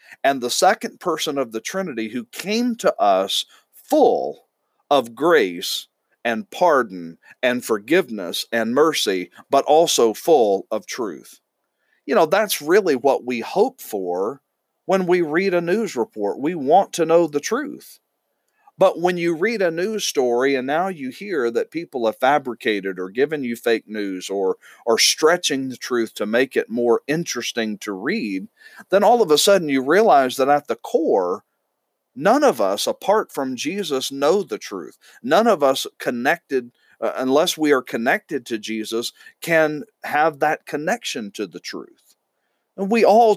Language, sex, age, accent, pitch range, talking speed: English, male, 40-59, American, 110-165 Hz, 160 wpm